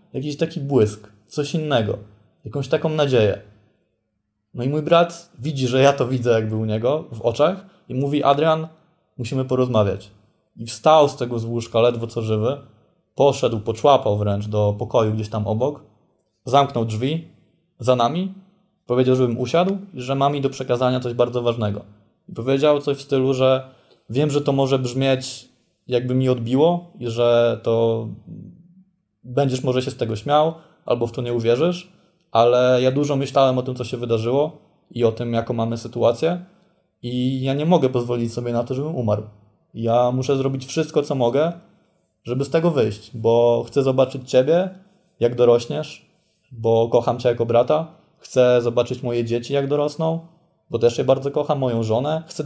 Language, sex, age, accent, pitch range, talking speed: Polish, male, 20-39, native, 120-155 Hz, 170 wpm